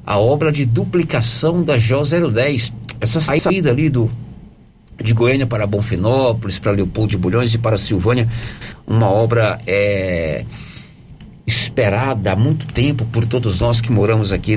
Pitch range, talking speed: 115-160 Hz, 145 wpm